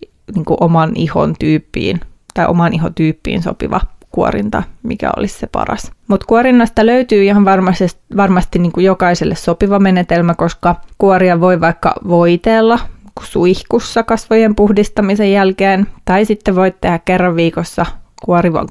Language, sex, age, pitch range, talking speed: Finnish, female, 20-39, 175-215 Hz, 130 wpm